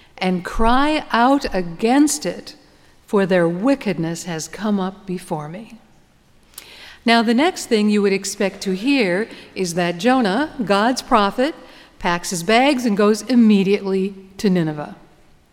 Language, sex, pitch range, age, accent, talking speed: English, female, 180-235 Hz, 50-69, American, 135 wpm